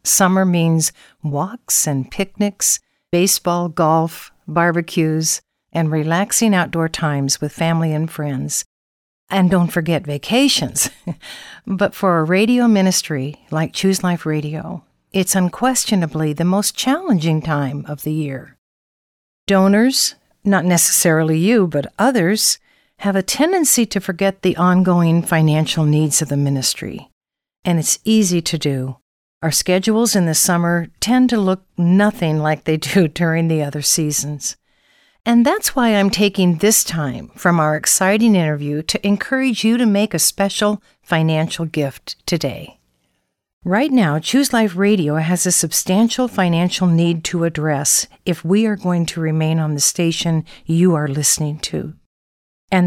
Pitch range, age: 155-200 Hz, 60-79